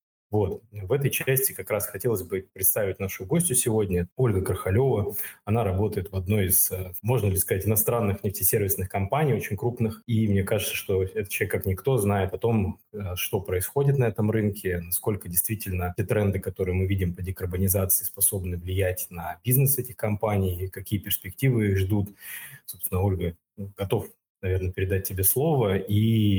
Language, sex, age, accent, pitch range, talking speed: Russian, male, 20-39, native, 95-110 Hz, 160 wpm